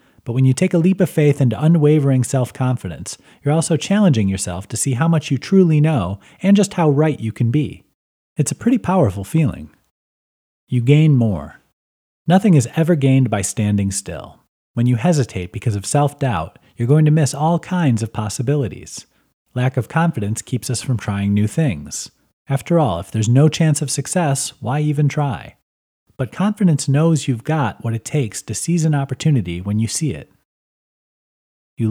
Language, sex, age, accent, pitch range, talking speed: English, male, 30-49, American, 105-155 Hz, 180 wpm